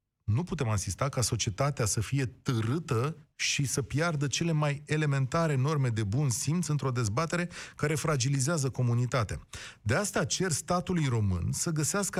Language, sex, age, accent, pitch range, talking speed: Romanian, male, 30-49, native, 120-175 Hz, 150 wpm